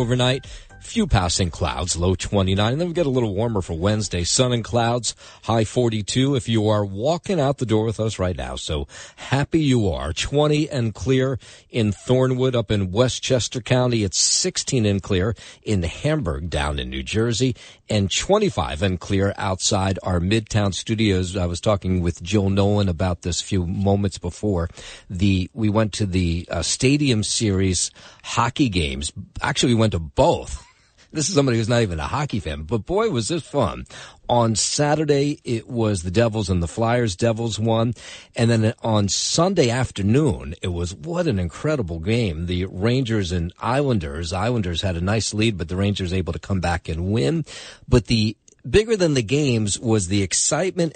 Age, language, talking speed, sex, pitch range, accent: 50-69, English, 180 wpm, male, 95-125 Hz, American